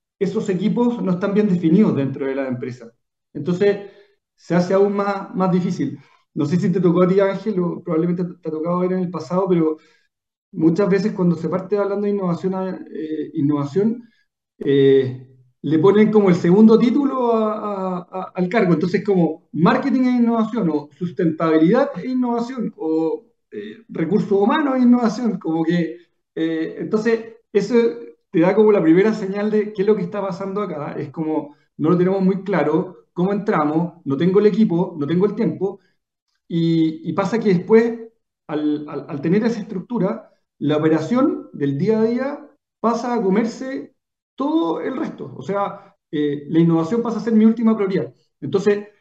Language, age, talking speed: Spanish, 40-59, 180 wpm